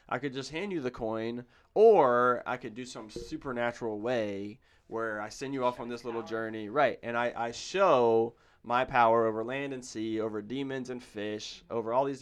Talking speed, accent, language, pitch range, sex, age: 200 wpm, American, English, 110-130 Hz, male, 20-39